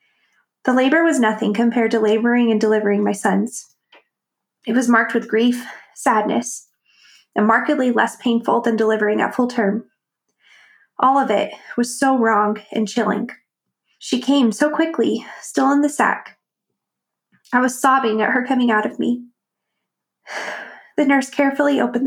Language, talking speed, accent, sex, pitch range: English, 150 wpm, American, female, 230-275 Hz